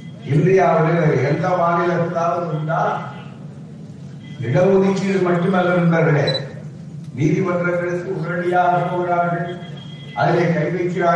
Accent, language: native, Tamil